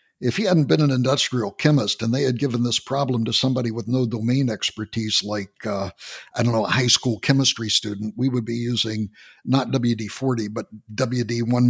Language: English